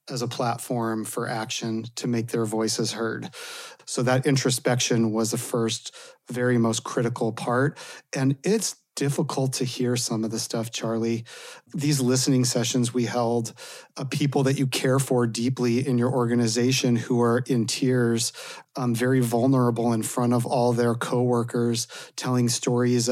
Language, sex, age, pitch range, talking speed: English, male, 30-49, 120-130 Hz, 155 wpm